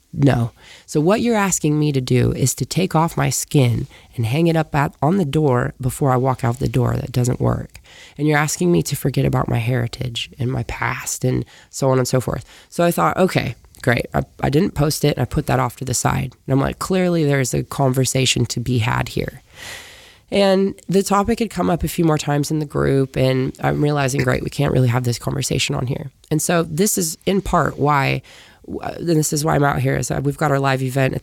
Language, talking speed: English, 240 wpm